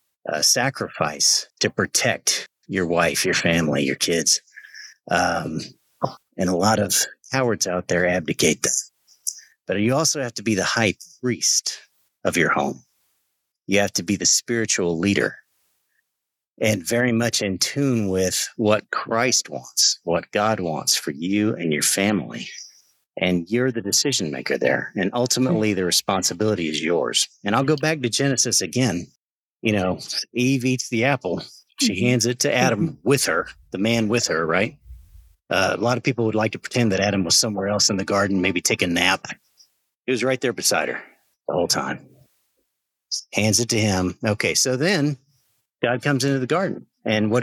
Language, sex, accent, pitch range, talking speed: English, male, American, 95-125 Hz, 175 wpm